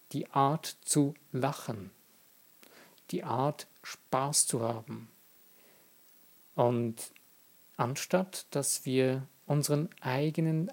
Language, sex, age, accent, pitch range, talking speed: German, male, 50-69, German, 130-175 Hz, 85 wpm